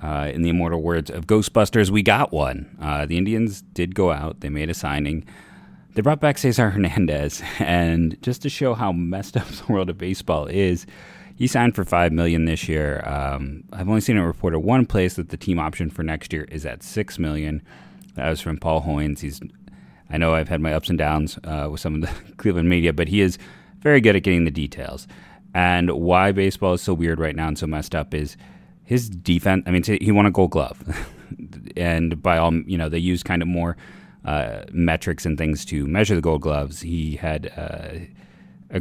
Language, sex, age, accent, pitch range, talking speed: English, male, 30-49, American, 80-95 Hz, 215 wpm